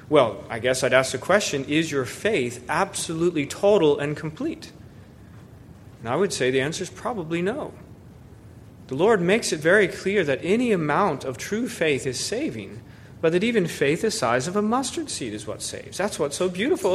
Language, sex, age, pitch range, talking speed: English, male, 30-49, 135-185 Hz, 190 wpm